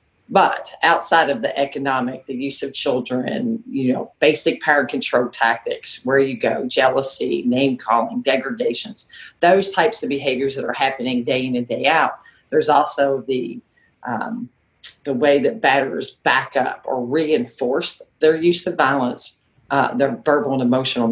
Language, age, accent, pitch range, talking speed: English, 40-59, American, 130-165 Hz, 160 wpm